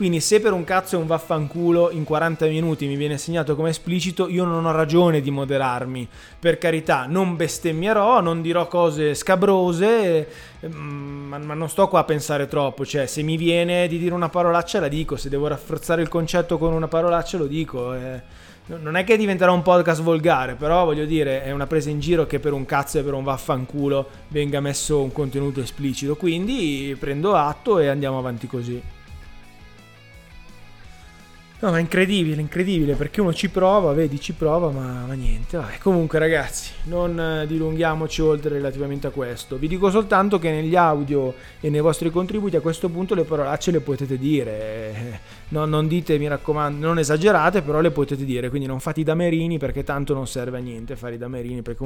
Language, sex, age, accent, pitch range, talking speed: Italian, male, 20-39, native, 135-170 Hz, 190 wpm